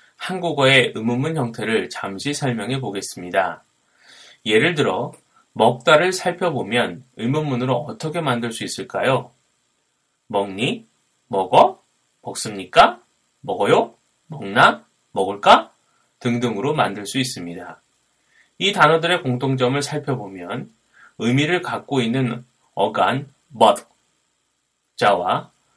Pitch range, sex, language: 120-155 Hz, male, Korean